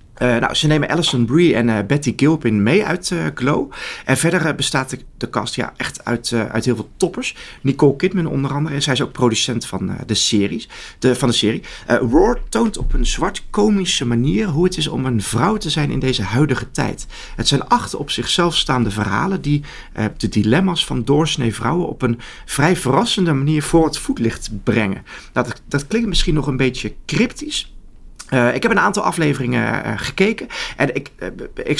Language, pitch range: Dutch, 120-160 Hz